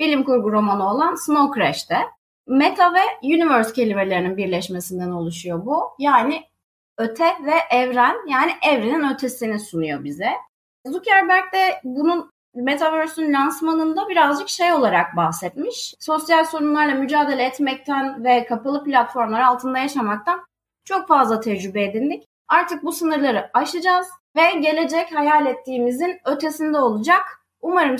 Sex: female